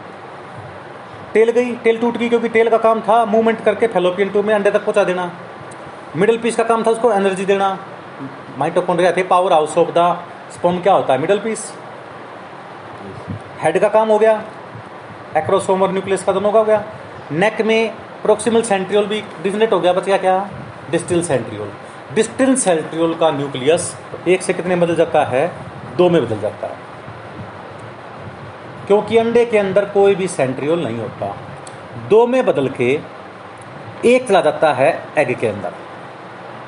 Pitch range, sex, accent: 170-225 Hz, male, native